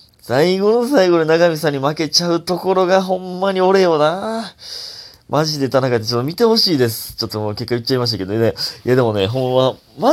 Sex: male